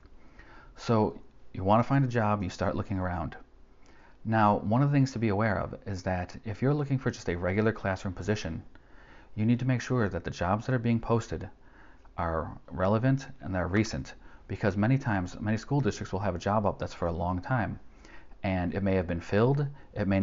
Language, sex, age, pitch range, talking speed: English, male, 40-59, 95-115 Hz, 210 wpm